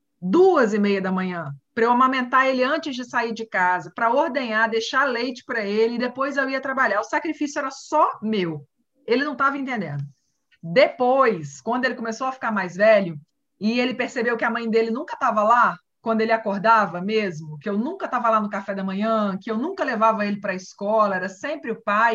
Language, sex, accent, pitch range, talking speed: Portuguese, female, Brazilian, 210-265 Hz, 210 wpm